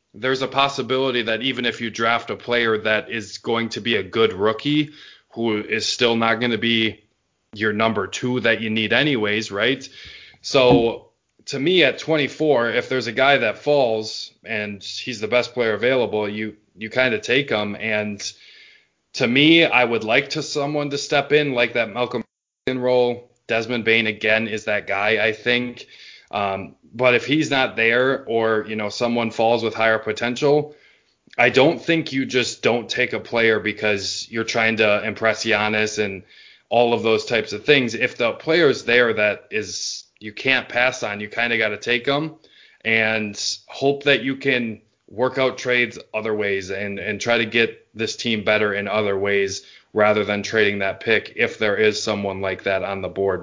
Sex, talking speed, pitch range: male, 190 wpm, 105-125 Hz